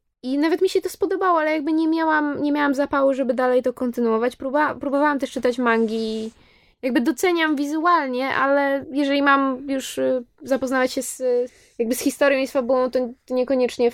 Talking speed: 175 wpm